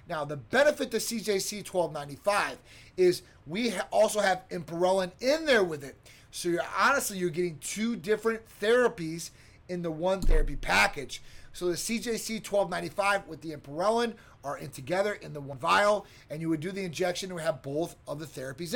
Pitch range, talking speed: 160-220 Hz, 165 wpm